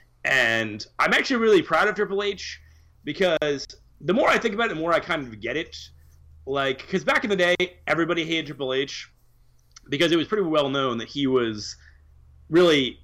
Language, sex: English, male